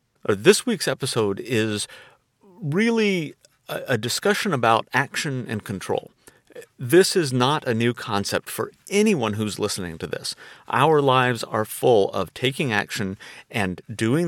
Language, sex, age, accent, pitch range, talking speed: English, male, 50-69, American, 110-155 Hz, 140 wpm